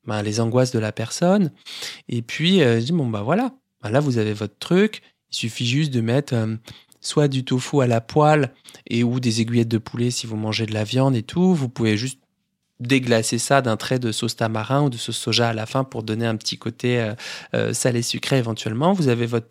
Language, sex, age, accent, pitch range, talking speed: French, male, 20-39, French, 115-140 Hz, 235 wpm